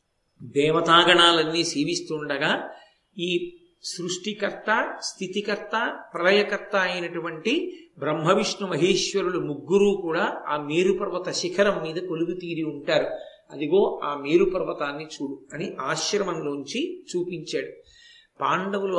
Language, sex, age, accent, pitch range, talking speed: Telugu, male, 50-69, native, 170-200 Hz, 90 wpm